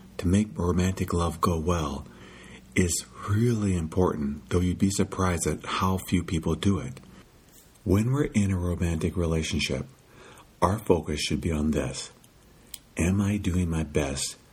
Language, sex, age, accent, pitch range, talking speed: English, male, 50-69, American, 75-95 Hz, 150 wpm